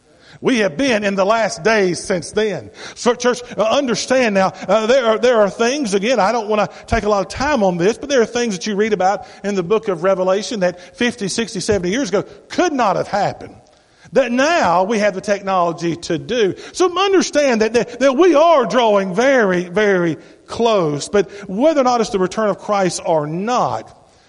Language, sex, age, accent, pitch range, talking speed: English, male, 50-69, American, 185-235 Hz, 210 wpm